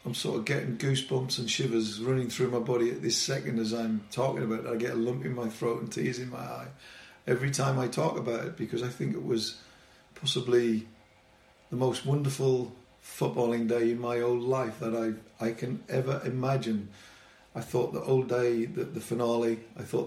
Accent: British